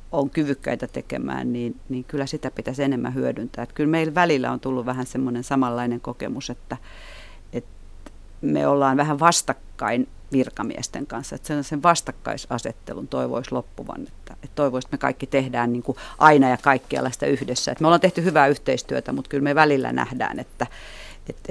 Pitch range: 125-145 Hz